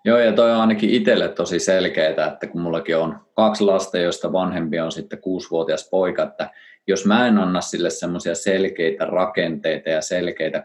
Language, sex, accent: Finnish, male, native